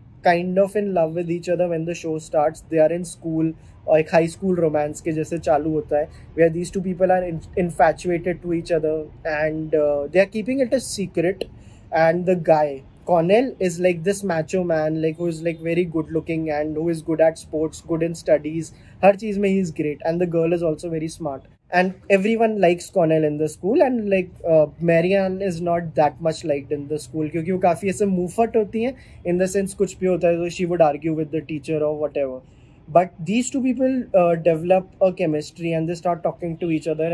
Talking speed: 205 wpm